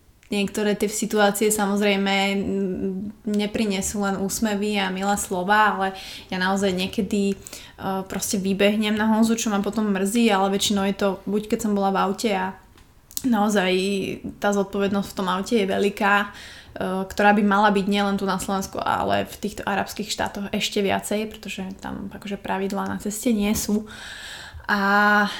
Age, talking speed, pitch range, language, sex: 20-39, 160 wpm, 195-225 Hz, Slovak, female